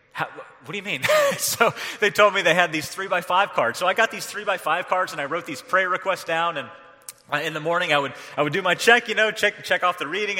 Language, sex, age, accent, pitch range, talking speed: English, male, 30-49, American, 140-170 Hz, 260 wpm